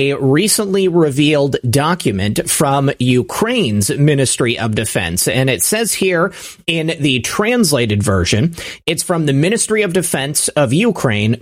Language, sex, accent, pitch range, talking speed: English, male, American, 135-185 Hz, 130 wpm